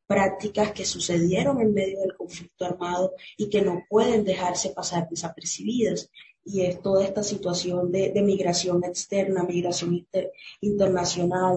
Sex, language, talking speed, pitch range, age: female, Spanish, 140 wpm, 175-200 Hz, 20-39